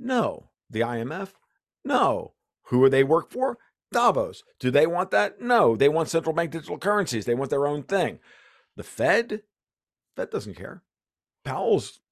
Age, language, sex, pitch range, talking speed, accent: 50-69, English, male, 105-150 Hz, 165 wpm, American